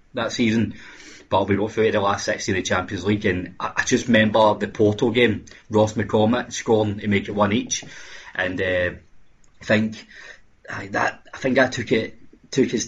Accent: British